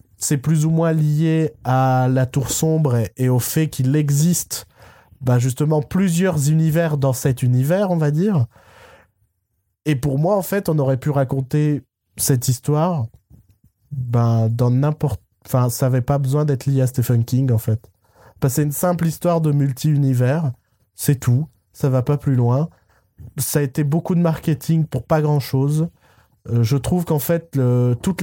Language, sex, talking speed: French, male, 175 wpm